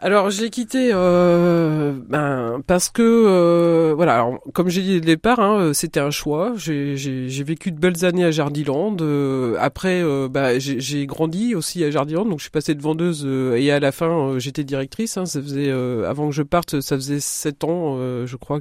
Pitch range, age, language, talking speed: 140-180 Hz, 40-59, French, 215 wpm